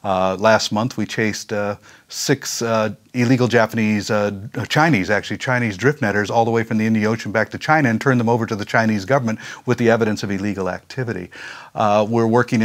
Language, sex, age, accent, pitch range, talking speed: French, male, 50-69, American, 105-125 Hz, 205 wpm